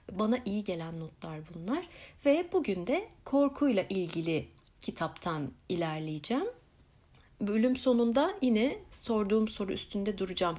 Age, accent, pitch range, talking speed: 60-79, native, 175-265 Hz, 110 wpm